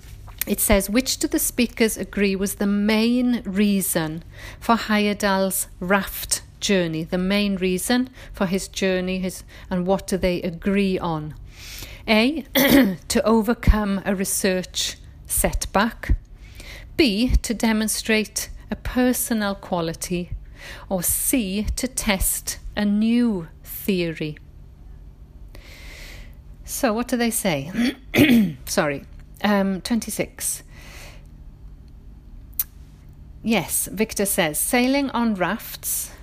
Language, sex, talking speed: English, female, 100 wpm